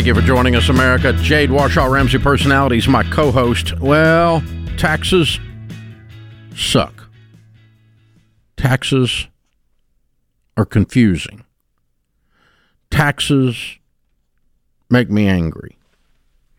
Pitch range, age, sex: 95-130 Hz, 50-69, male